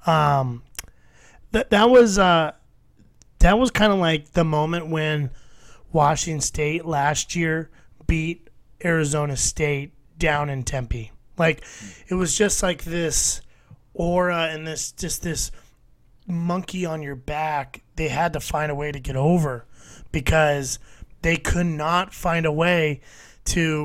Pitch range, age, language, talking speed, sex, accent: 150-185 Hz, 30-49, English, 140 wpm, male, American